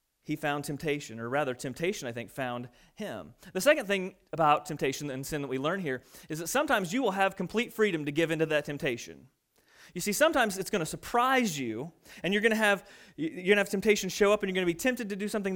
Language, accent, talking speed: English, American, 245 wpm